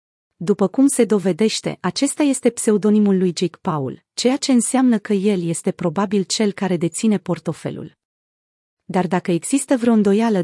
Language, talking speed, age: Romanian, 150 wpm, 30-49